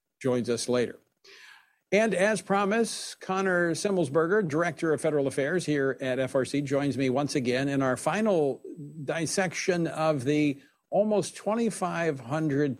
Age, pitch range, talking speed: 60-79, 125-160 Hz, 125 wpm